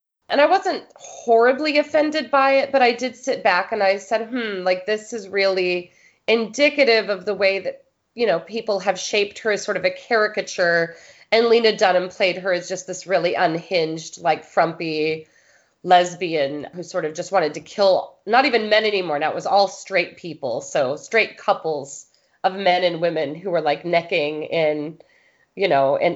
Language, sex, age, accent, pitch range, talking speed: English, female, 30-49, American, 165-220 Hz, 185 wpm